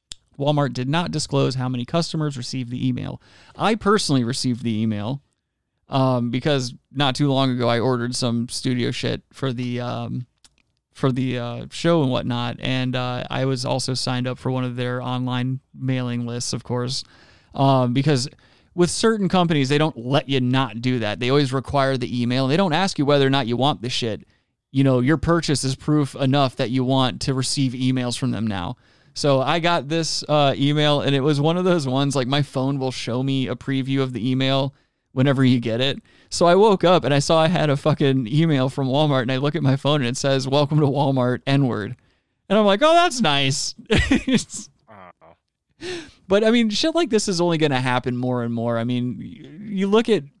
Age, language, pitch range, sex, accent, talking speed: 30-49, English, 125-150 Hz, male, American, 210 wpm